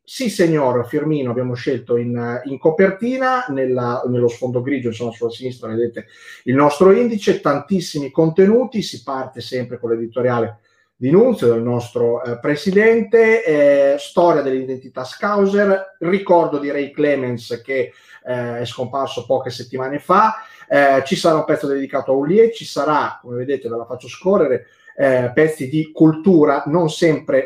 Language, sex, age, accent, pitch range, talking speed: Italian, male, 30-49, native, 125-175 Hz, 150 wpm